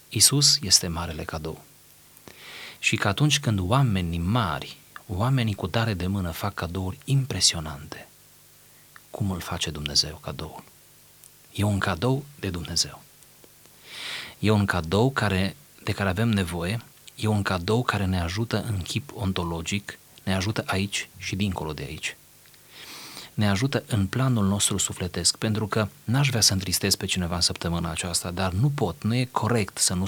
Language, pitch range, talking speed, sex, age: Romanian, 90-115 Hz, 155 wpm, male, 30-49